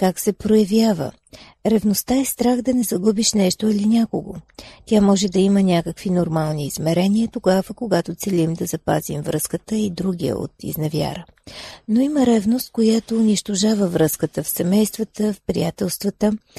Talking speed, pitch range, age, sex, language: 140 wpm, 180-225 Hz, 40-59, female, Bulgarian